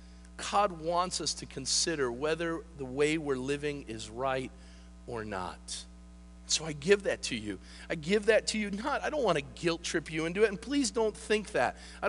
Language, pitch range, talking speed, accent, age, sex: English, 115-185 Hz, 205 wpm, American, 40-59, male